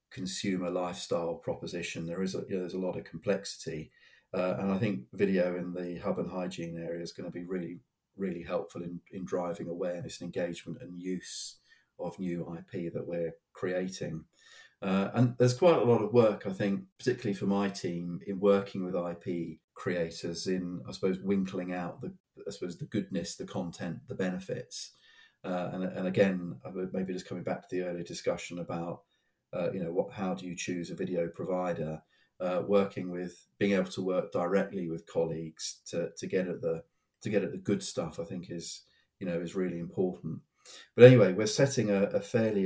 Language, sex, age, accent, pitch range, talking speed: English, male, 40-59, British, 85-95 Hz, 195 wpm